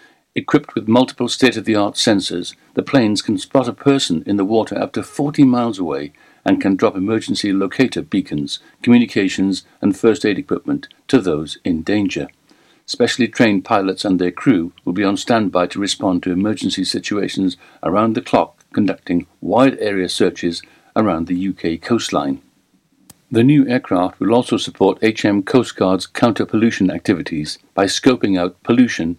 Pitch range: 95-120 Hz